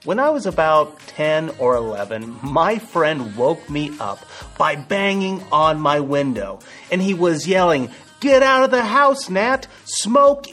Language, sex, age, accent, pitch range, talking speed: English, male, 30-49, American, 130-200 Hz, 160 wpm